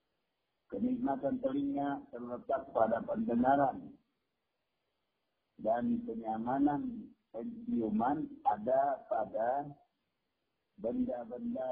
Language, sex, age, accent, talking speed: Indonesian, male, 50-69, native, 55 wpm